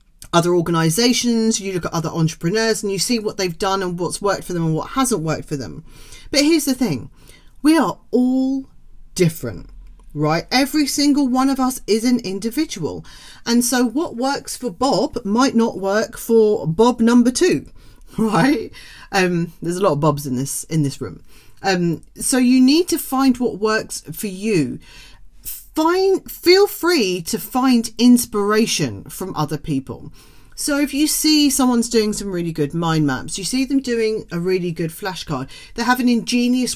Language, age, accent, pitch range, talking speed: English, 40-59, British, 165-250 Hz, 175 wpm